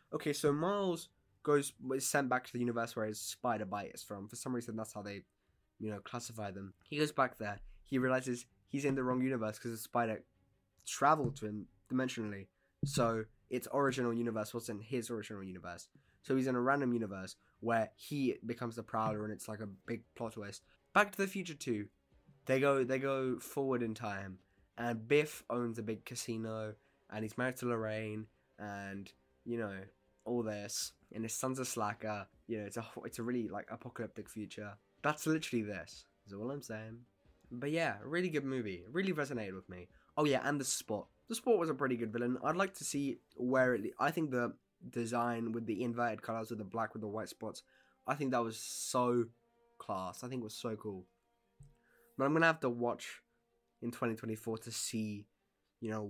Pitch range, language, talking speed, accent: 105-130 Hz, English, 200 wpm, British